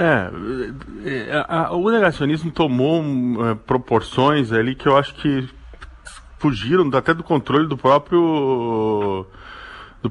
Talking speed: 100 wpm